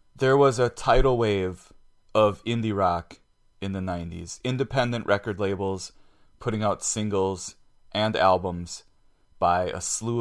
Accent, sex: American, male